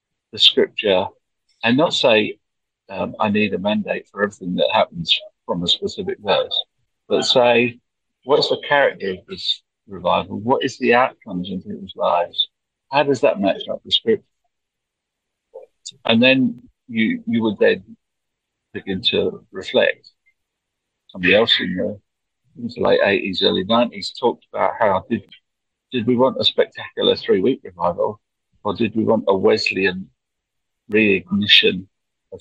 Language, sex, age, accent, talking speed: English, male, 50-69, British, 145 wpm